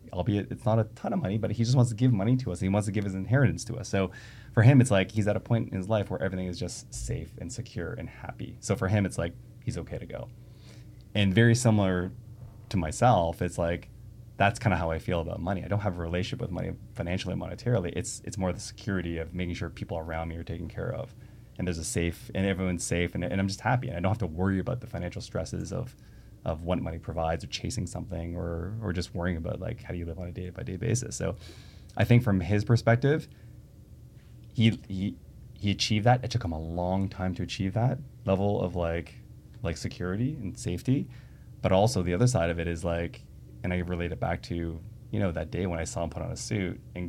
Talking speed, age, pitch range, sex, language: 250 wpm, 20-39, 90-115 Hz, male, English